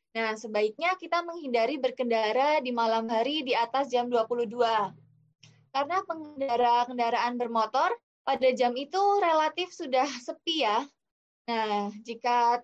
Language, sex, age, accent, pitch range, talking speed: Indonesian, female, 20-39, native, 230-280 Hz, 115 wpm